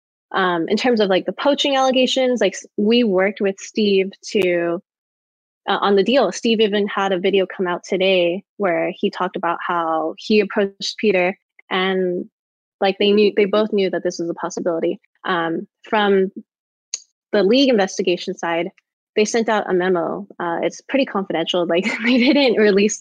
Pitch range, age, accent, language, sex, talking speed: 180-220 Hz, 20-39, American, English, female, 170 wpm